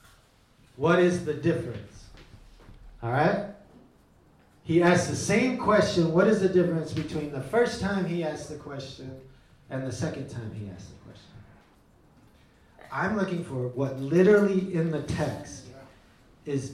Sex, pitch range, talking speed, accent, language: male, 115-165 Hz, 145 wpm, American, English